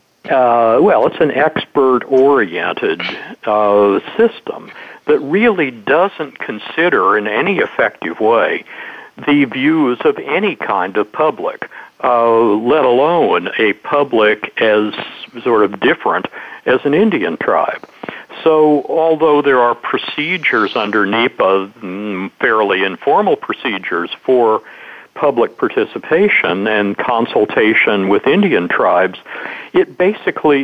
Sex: male